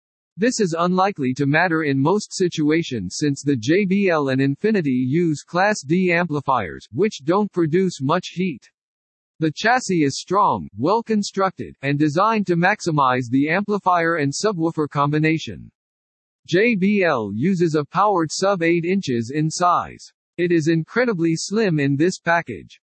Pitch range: 140-190 Hz